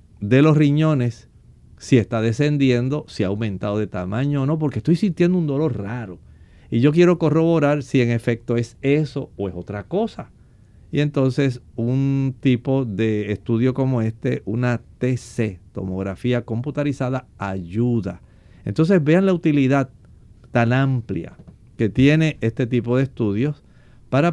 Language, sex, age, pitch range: Spanish, male, 50-69, 115-140 Hz